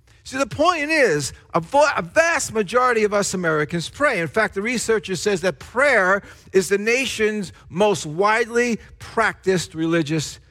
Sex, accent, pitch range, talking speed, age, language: male, American, 170-260 Hz, 145 wpm, 50-69, English